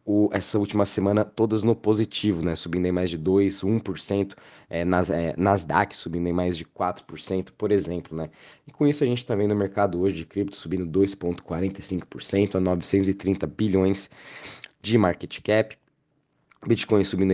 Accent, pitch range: Brazilian, 90-105 Hz